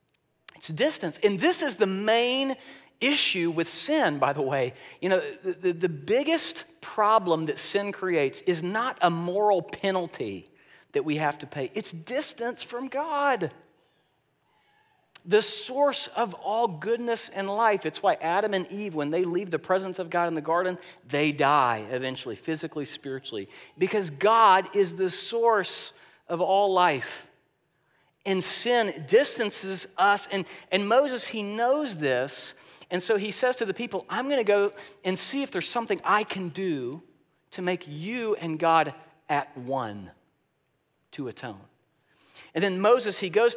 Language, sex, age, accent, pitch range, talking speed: English, male, 40-59, American, 165-230 Hz, 155 wpm